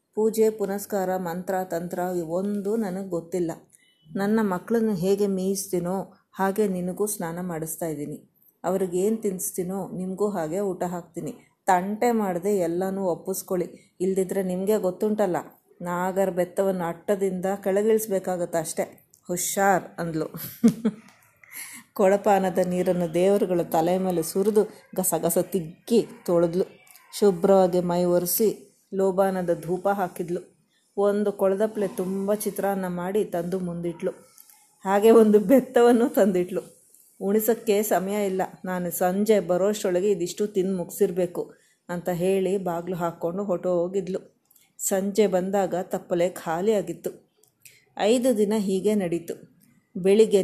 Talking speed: 100 wpm